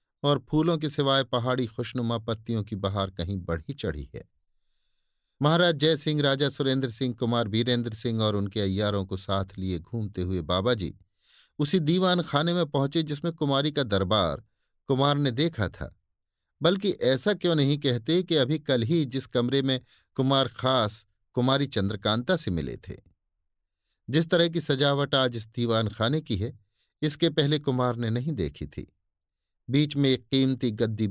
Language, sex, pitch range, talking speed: Hindi, male, 100-140 Hz, 165 wpm